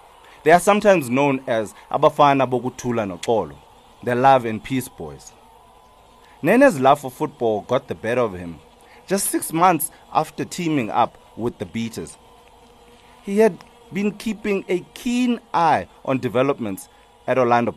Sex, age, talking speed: male, 30-49, 145 wpm